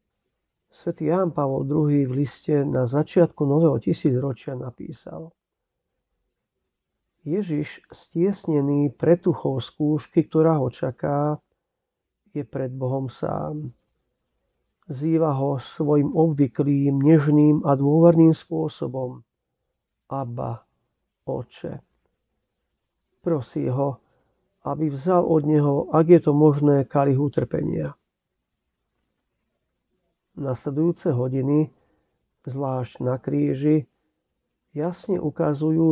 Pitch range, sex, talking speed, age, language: 135-160 Hz, male, 90 wpm, 50-69, Slovak